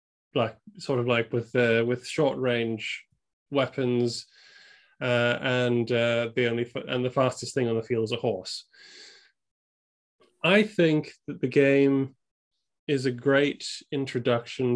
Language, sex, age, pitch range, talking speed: English, male, 20-39, 120-145 Hz, 140 wpm